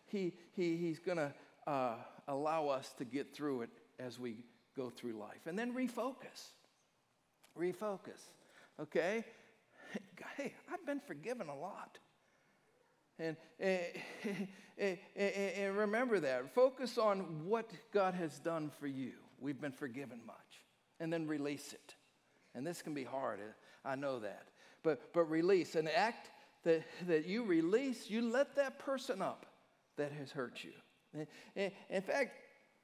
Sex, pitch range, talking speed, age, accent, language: male, 145-205 Hz, 140 wpm, 60-79, American, English